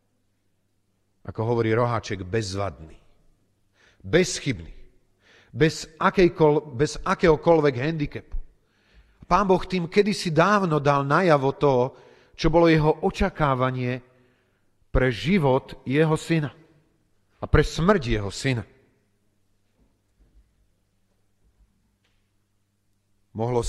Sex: male